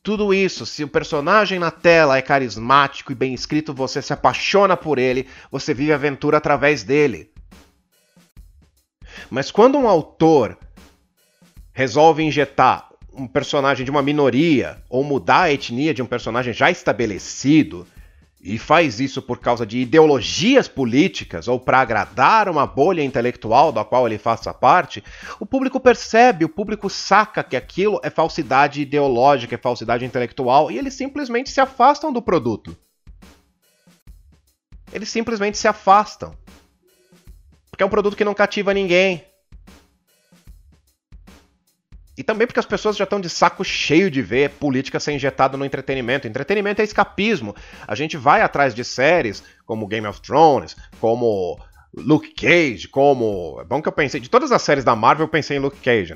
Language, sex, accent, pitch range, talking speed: Portuguese, male, Brazilian, 130-180 Hz, 155 wpm